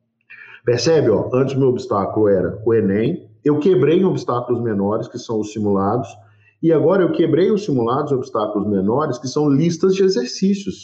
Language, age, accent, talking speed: Portuguese, 50-69, Brazilian, 165 wpm